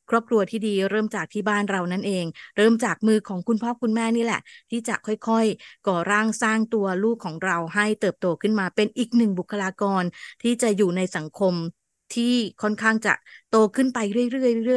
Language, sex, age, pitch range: Thai, female, 20-39, 190-225 Hz